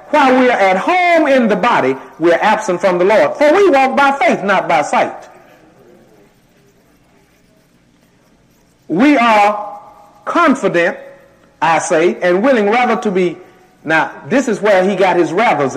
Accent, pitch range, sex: American, 170-220 Hz, male